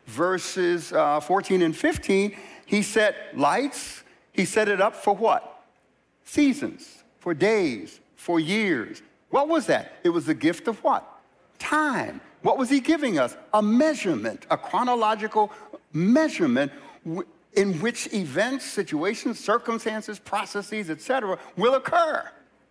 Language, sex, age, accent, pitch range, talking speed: English, male, 60-79, American, 185-275 Hz, 125 wpm